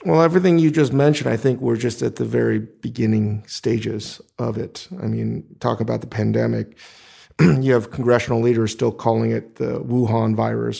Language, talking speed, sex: English, 180 wpm, male